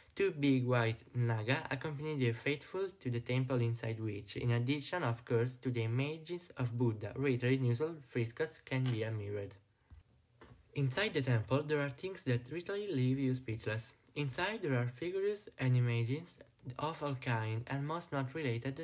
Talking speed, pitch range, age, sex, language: 170 wpm, 120-150 Hz, 20-39, male, Italian